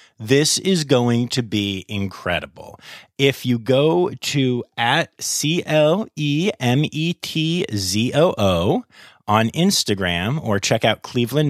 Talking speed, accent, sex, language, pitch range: 95 wpm, American, male, English, 95-140 Hz